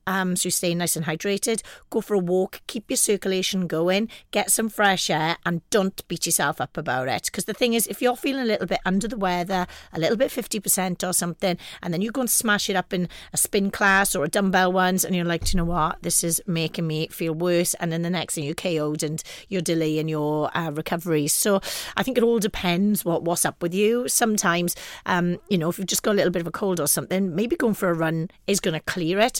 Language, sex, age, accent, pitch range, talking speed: English, female, 40-59, British, 165-200 Hz, 250 wpm